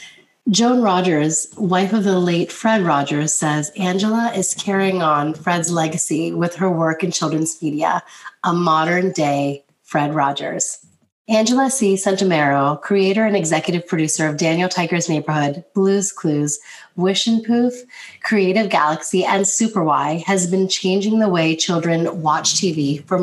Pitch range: 160-195 Hz